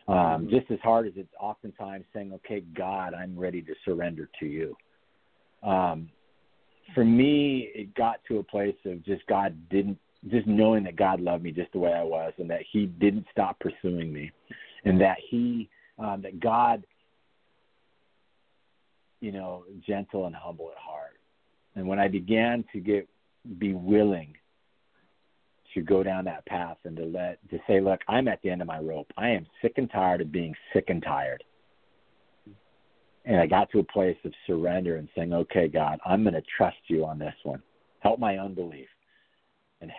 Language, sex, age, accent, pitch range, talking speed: English, male, 50-69, American, 85-110 Hz, 180 wpm